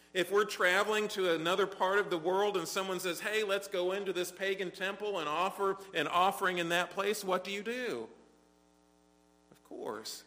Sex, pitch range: male, 140-185 Hz